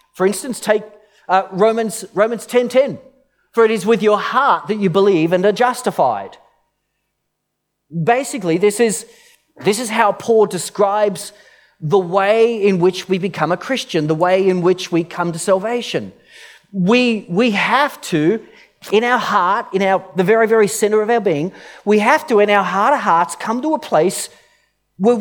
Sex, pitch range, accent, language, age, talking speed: male, 180-230 Hz, Australian, English, 40-59, 170 wpm